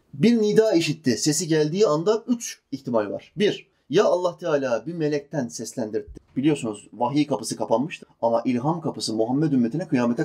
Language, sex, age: Turkish, male, 30-49